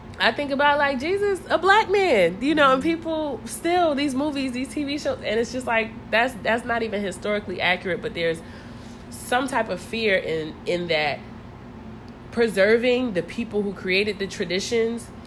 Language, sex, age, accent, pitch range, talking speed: English, female, 20-39, American, 155-200 Hz, 175 wpm